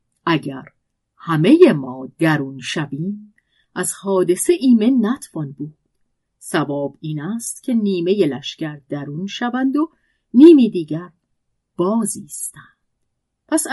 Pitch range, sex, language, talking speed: 160-225 Hz, female, Persian, 95 wpm